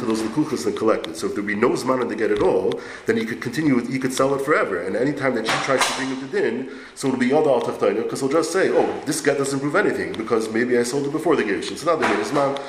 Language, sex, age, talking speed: English, male, 30-49, 305 wpm